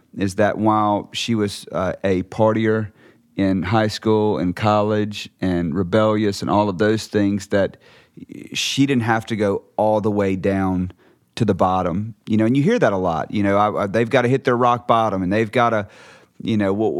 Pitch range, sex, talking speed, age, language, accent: 105-120 Hz, male, 200 wpm, 40-59, English, American